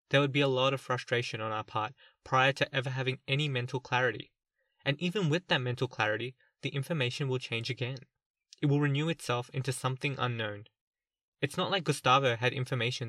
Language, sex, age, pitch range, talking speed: English, male, 20-39, 120-145 Hz, 190 wpm